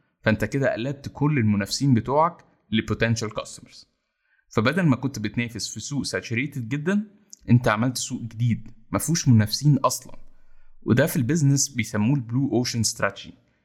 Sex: male